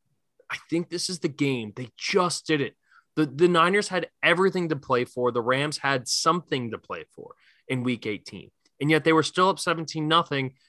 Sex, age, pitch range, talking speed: male, 20-39, 135-190 Hz, 195 wpm